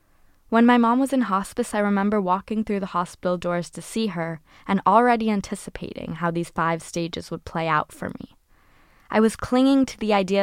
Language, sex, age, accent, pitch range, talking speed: English, female, 10-29, American, 175-225 Hz, 195 wpm